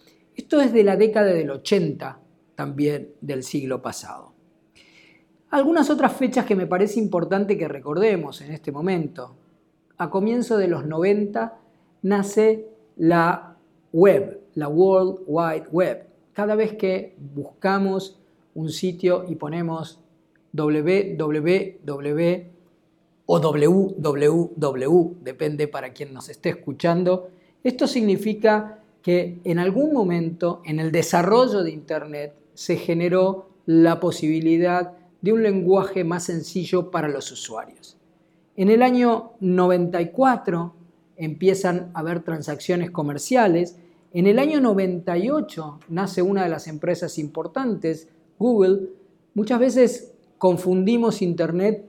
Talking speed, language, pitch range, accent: 115 wpm, English, 160-195 Hz, Argentinian